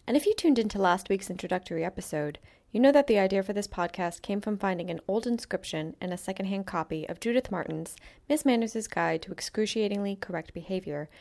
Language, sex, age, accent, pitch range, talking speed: English, female, 10-29, American, 180-235 Hz, 200 wpm